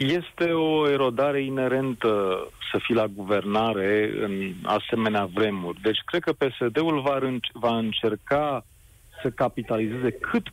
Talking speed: 115 wpm